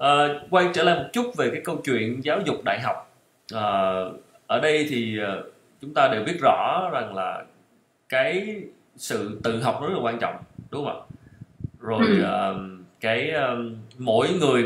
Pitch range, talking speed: 110-145 Hz, 155 wpm